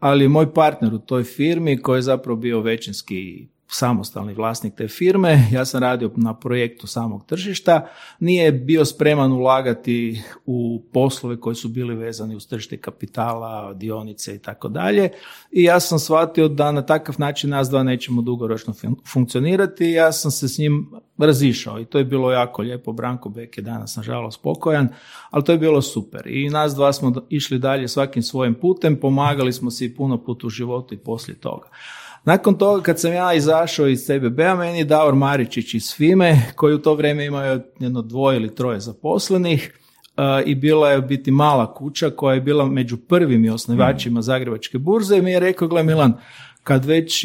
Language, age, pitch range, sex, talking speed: Croatian, 40-59, 120-155 Hz, male, 180 wpm